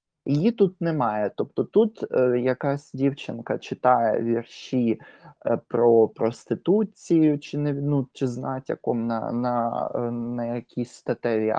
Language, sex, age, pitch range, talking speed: Ukrainian, male, 20-39, 110-135 Hz, 90 wpm